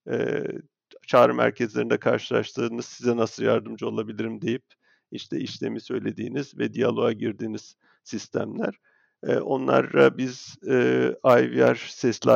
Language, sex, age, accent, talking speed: Turkish, male, 50-69, native, 105 wpm